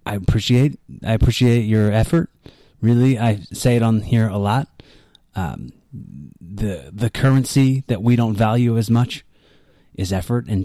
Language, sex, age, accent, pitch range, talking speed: English, male, 30-49, American, 100-120 Hz, 150 wpm